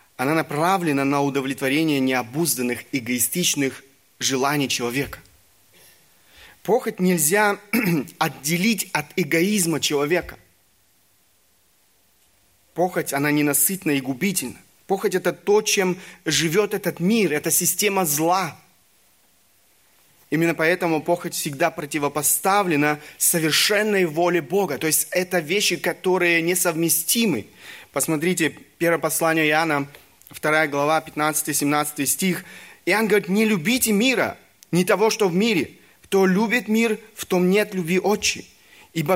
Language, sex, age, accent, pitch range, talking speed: Russian, male, 30-49, native, 145-195 Hz, 110 wpm